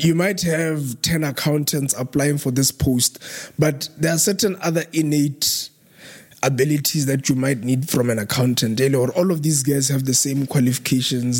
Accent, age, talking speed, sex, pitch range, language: South African, 20-39, 165 wpm, male, 125-150 Hz, English